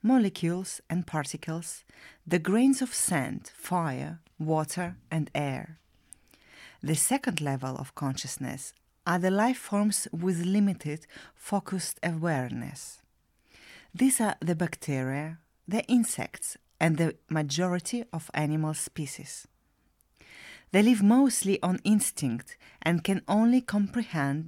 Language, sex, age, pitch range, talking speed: English, female, 30-49, 145-195 Hz, 110 wpm